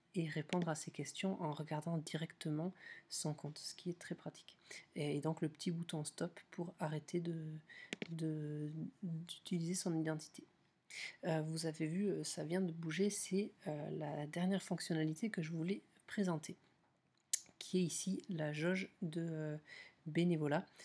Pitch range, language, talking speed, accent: 155-185 Hz, French, 150 wpm, French